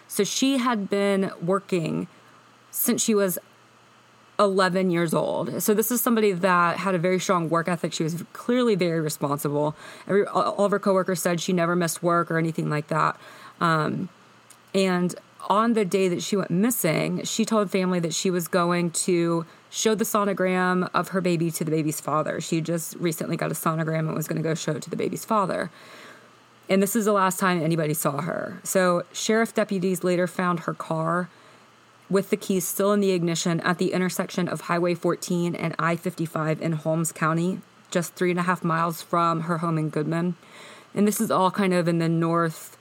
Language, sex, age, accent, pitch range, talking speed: English, female, 30-49, American, 165-195 Hz, 195 wpm